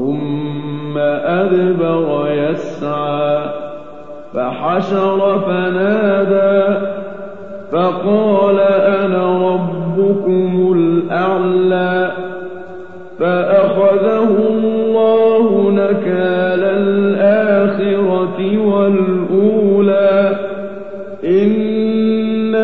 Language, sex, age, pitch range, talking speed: Arabic, male, 50-69, 180-200 Hz, 35 wpm